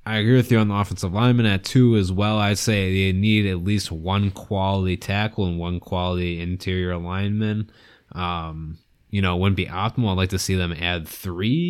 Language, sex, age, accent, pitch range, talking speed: English, male, 20-39, American, 90-110 Hz, 205 wpm